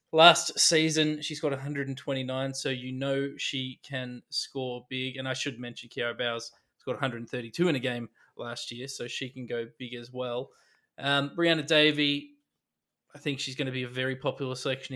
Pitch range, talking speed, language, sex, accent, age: 125-145 Hz, 180 wpm, English, male, Australian, 20-39